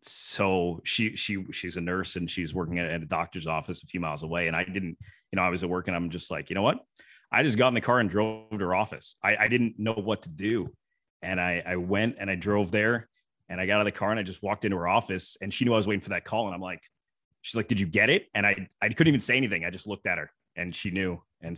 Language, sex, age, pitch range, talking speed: English, male, 30-49, 85-105 Hz, 300 wpm